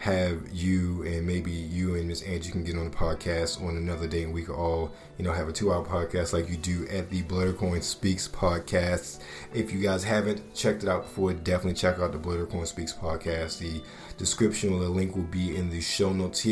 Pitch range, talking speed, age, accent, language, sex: 90-100 Hz, 220 wpm, 30-49, American, English, male